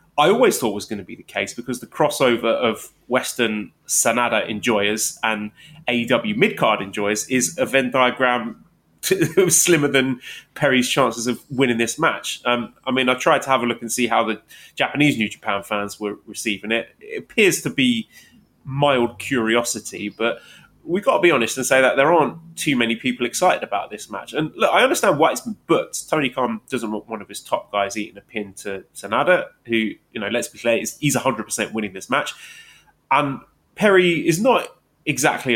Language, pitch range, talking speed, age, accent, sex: English, 110-145 Hz, 195 wpm, 20-39, British, male